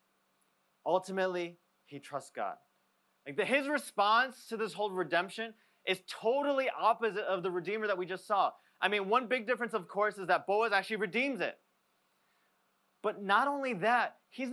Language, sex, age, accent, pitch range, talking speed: English, male, 20-39, American, 165-230 Hz, 165 wpm